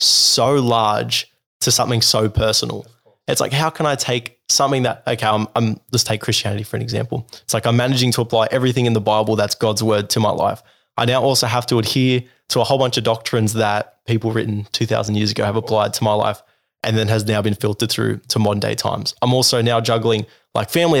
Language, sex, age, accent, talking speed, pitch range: English, male, 20-39, Australian, 225 wpm, 110-125 Hz